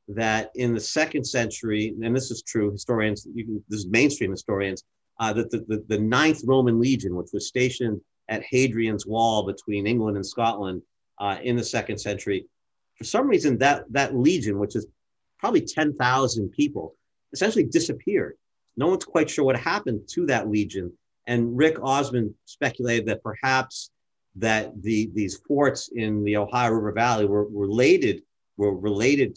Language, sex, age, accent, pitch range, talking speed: English, male, 50-69, American, 105-125 Hz, 165 wpm